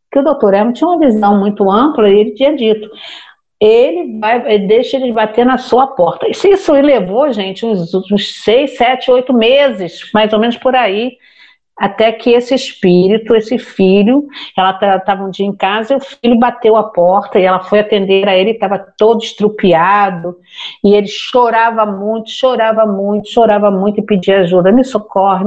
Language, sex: Portuguese, female